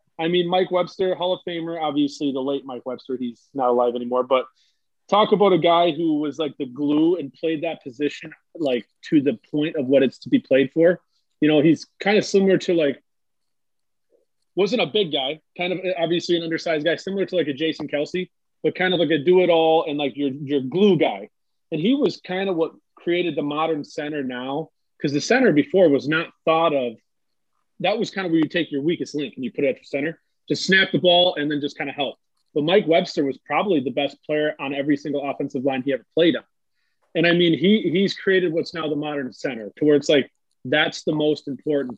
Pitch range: 145-180 Hz